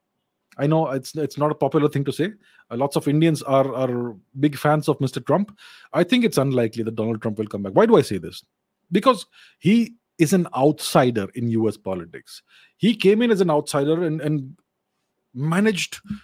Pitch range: 135-180 Hz